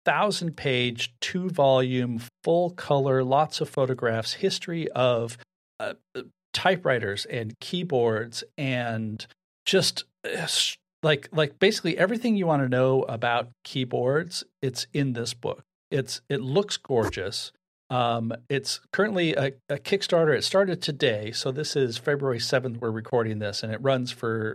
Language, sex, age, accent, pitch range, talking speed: English, male, 40-59, American, 115-150 Hz, 135 wpm